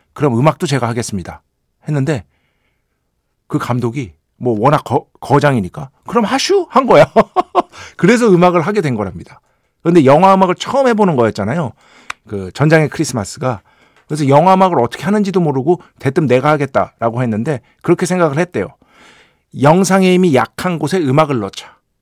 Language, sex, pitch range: Korean, male, 115-165 Hz